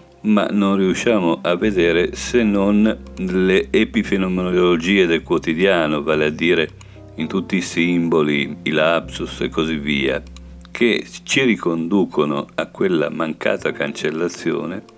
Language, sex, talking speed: Italian, male, 120 wpm